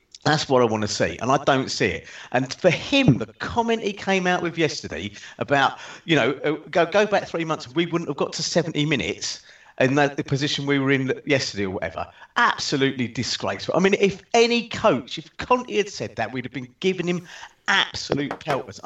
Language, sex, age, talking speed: English, male, 40-59, 205 wpm